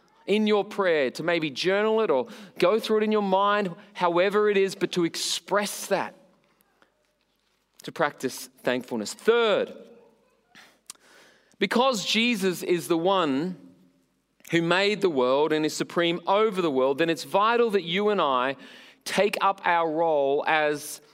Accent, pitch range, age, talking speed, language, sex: Australian, 150-205 Hz, 30-49, 150 wpm, English, male